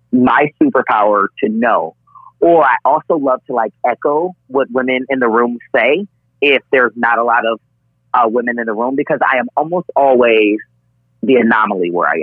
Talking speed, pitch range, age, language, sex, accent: 180 wpm, 105-145 Hz, 30-49, English, male, American